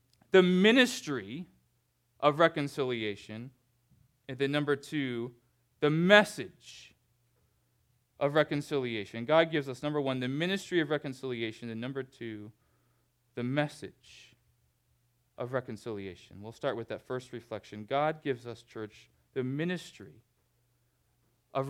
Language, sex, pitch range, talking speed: English, male, 120-185 Hz, 115 wpm